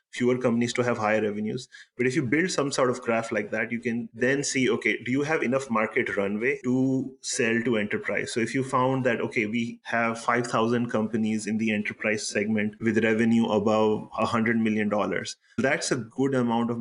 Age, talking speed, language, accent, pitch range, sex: 30-49, 195 wpm, English, Indian, 110-125 Hz, male